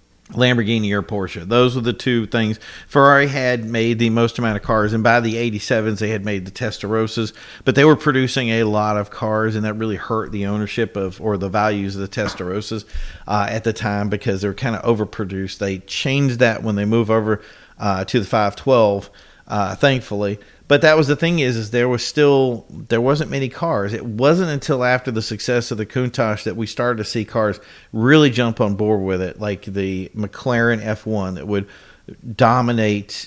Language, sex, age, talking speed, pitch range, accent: English, male, 50-69, 205 wpm, 105-120 Hz, American